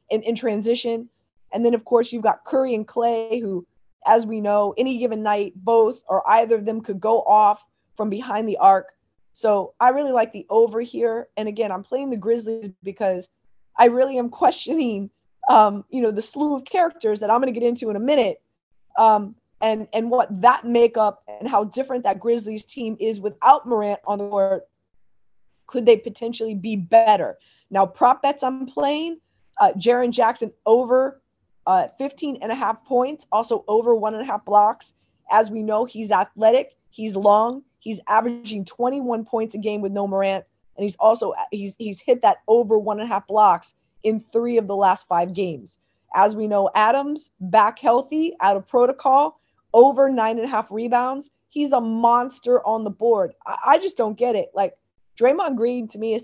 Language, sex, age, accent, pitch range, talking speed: English, female, 20-39, American, 210-245 Hz, 190 wpm